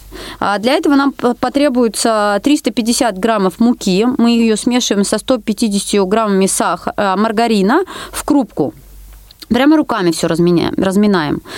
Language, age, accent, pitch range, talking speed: Russian, 30-49, native, 215-295 Hz, 105 wpm